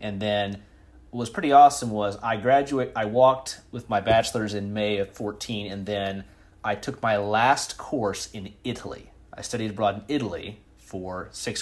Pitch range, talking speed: 95-110 Hz, 175 wpm